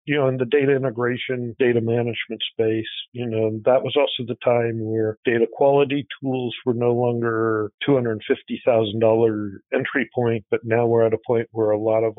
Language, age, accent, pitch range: English, 50-69, American, 115-135 Hz